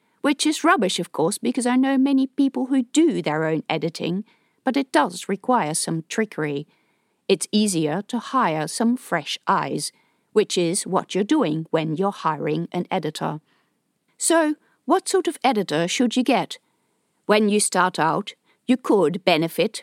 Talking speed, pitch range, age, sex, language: 160 wpm, 165-250 Hz, 50-69, female, English